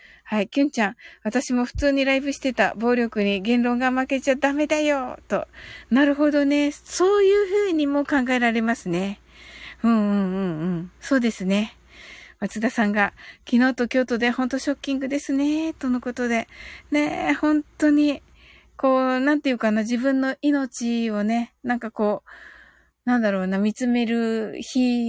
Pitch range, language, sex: 215-275 Hz, Japanese, female